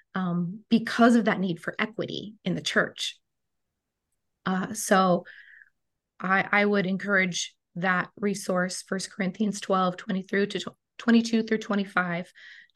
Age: 20-39